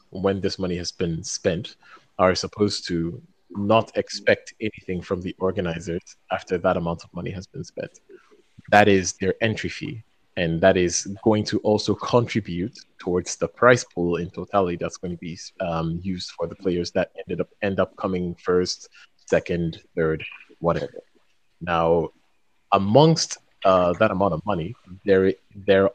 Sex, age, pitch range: male, 30-49, 85-100 Hz